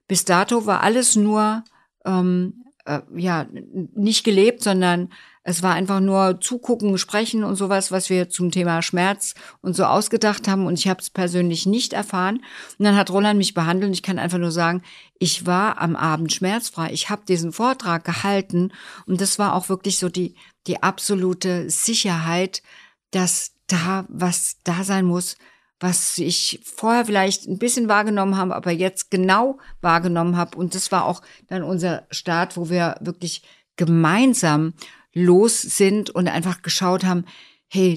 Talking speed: 165 wpm